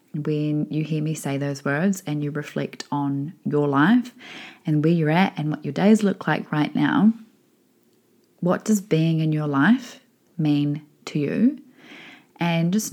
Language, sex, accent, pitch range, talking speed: English, female, Australian, 145-180 Hz, 165 wpm